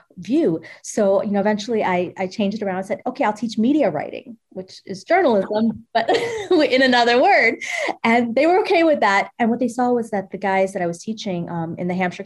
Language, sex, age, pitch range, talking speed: English, female, 30-49, 175-215 Hz, 225 wpm